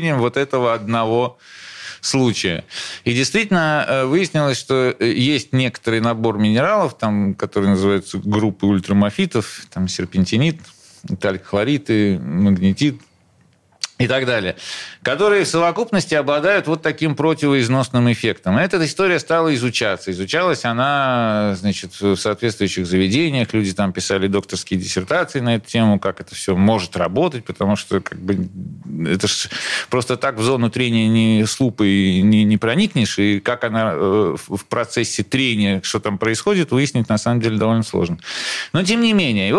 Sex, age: male, 40-59